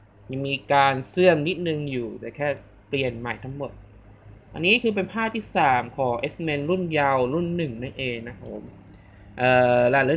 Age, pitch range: 20-39, 120-170 Hz